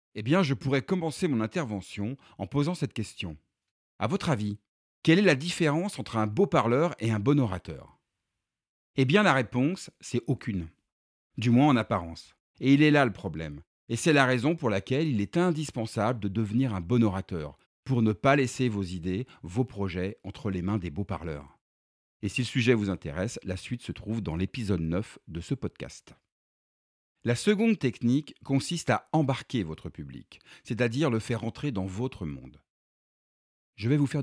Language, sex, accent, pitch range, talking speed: French, male, French, 95-135 Hz, 185 wpm